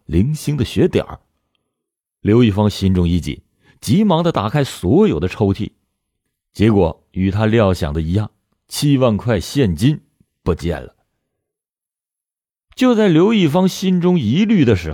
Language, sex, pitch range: Chinese, male, 95-140 Hz